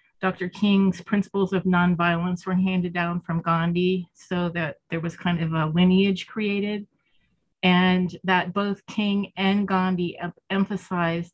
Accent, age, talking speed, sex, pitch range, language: American, 30-49, 140 wpm, female, 170-195 Hz, English